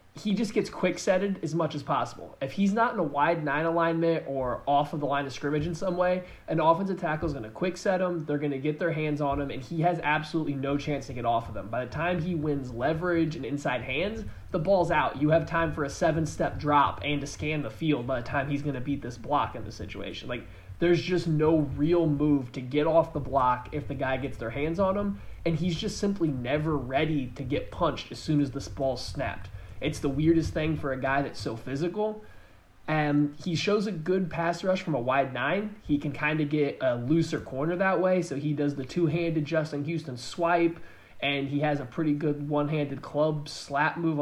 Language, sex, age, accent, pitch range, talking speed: English, male, 20-39, American, 140-170 Hz, 235 wpm